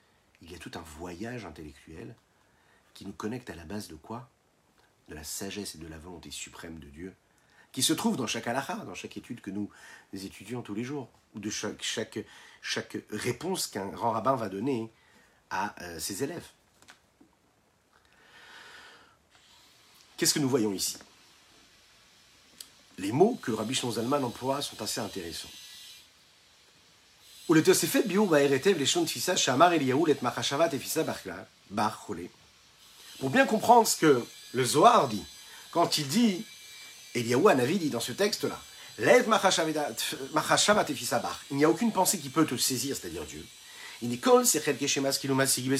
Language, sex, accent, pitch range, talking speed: French, male, French, 115-170 Hz, 125 wpm